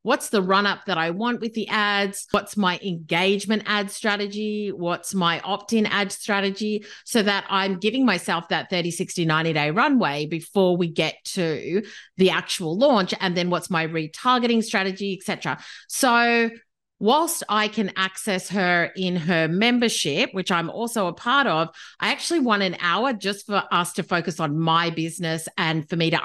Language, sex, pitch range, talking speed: English, female, 165-210 Hz, 170 wpm